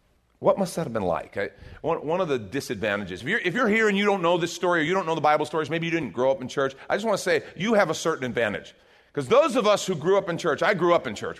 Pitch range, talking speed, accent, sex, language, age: 150-235 Hz, 310 wpm, American, male, English, 40-59